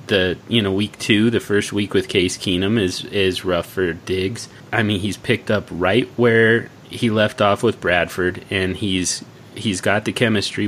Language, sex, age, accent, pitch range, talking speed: English, male, 30-49, American, 90-115 Hz, 190 wpm